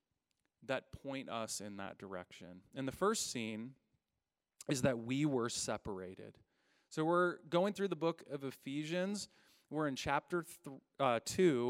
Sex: male